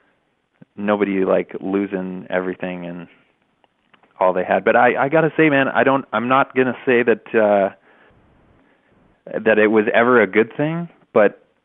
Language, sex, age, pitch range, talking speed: English, male, 20-39, 95-110 Hz, 155 wpm